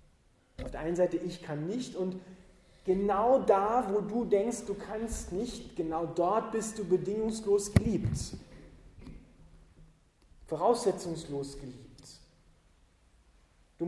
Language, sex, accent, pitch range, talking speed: German, male, German, 160-220 Hz, 105 wpm